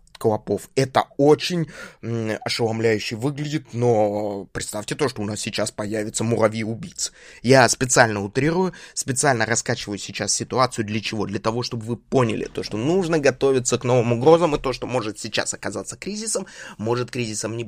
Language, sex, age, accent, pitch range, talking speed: Russian, male, 20-39, native, 115-145 Hz, 155 wpm